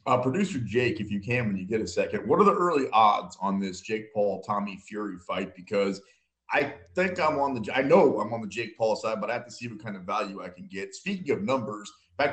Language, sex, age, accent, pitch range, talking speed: English, male, 30-49, American, 105-170 Hz, 260 wpm